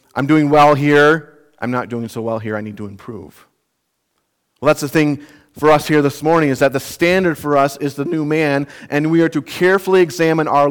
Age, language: 40-59, English